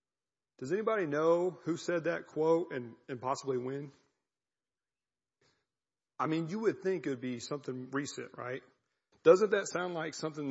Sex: male